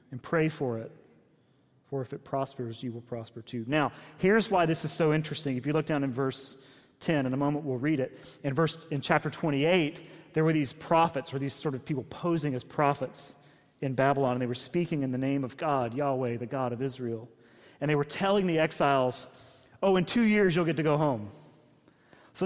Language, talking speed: English, 215 wpm